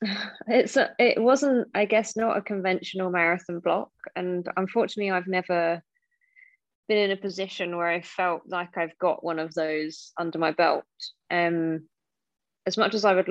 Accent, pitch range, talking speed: British, 160-195 Hz, 165 wpm